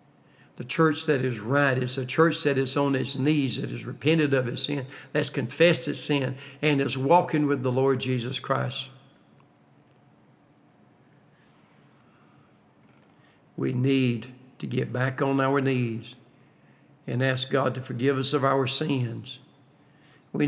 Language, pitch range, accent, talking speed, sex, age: English, 130-150 Hz, American, 145 wpm, male, 60-79